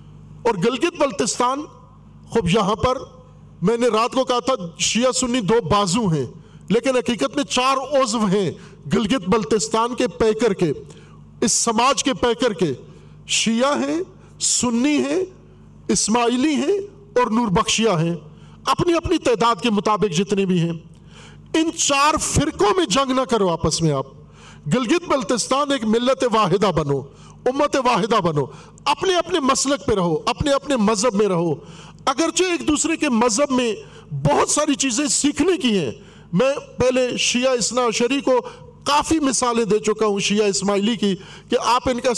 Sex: male